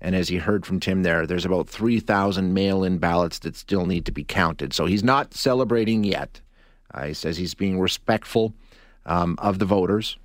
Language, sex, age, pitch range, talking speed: English, male, 40-59, 90-110 Hz, 200 wpm